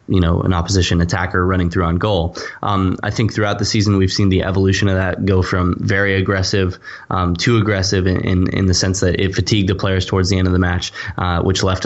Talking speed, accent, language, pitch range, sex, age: 240 wpm, American, English, 90-100 Hz, male, 10-29